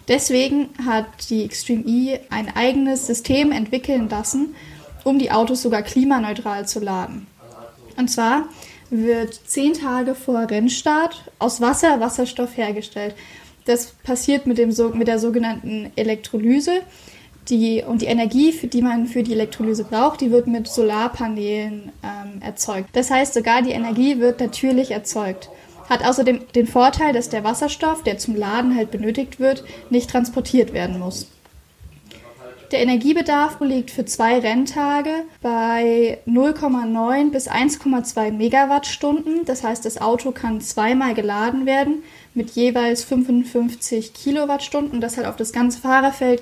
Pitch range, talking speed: 225-265 Hz, 135 wpm